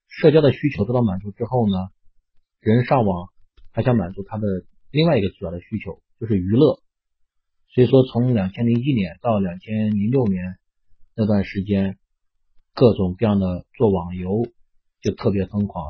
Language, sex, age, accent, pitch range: Chinese, male, 30-49, native, 90-115 Hz